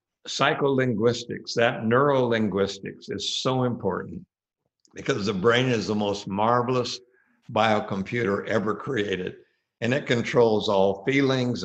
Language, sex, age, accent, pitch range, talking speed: English, male, 60-79, American, 100-125 Hz, 115 wpm